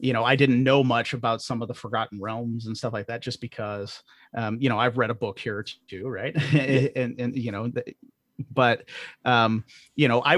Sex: male